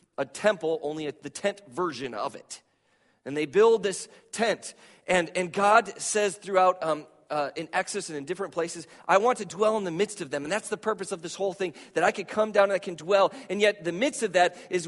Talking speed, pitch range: 240 wpm, 135-200 Hz